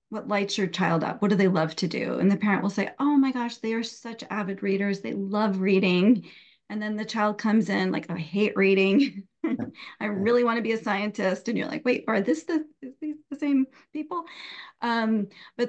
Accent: American